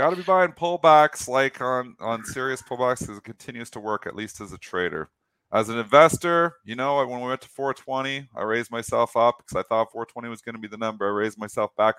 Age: 40-59